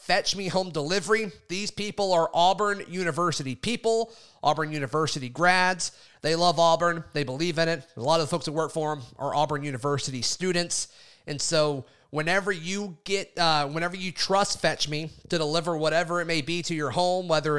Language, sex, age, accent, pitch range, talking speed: English, male, 30-49, American, 145-180 Hz, 185 wpm